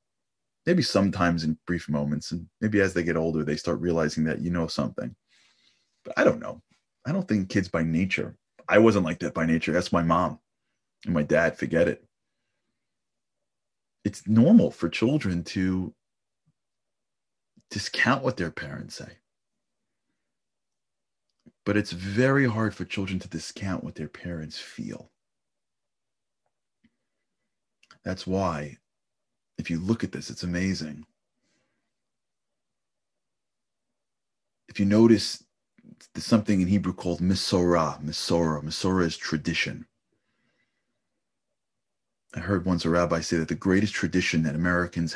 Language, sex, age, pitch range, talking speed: English, male, 30-49, 80-100 Hz, 130 wpm